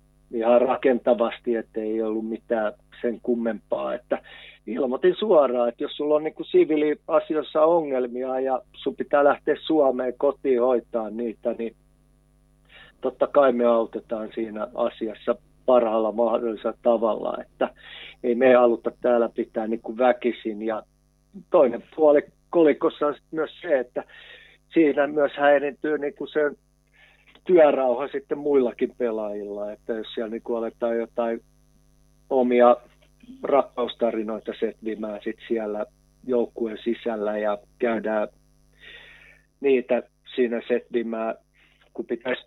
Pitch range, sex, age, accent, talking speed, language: 115-140 Hz, male, 50-69, native, 115 wpm, Finnish